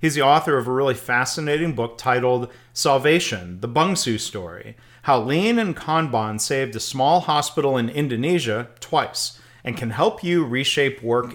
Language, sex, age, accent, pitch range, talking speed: English, male, 40-59, American, 120-150 Hz, 160 wpm